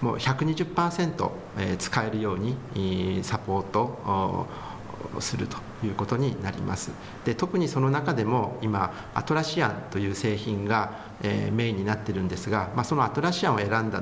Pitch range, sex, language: 110-155 Hz, male, Japanese